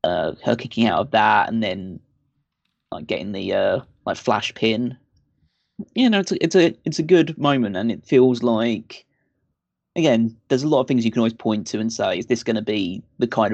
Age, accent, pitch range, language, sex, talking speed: 20-39, British, 110-130 Hz, English, male, 220 wpm